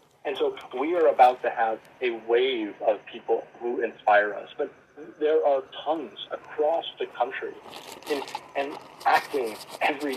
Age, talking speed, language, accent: 40-59, 155 wpm, English, American